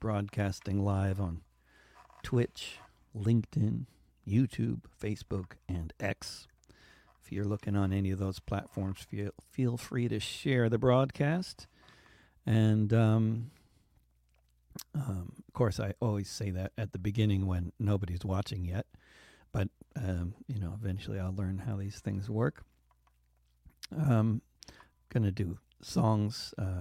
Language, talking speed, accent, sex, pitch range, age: English, 130 wpm, American, male, 95-110 Hz, 60-79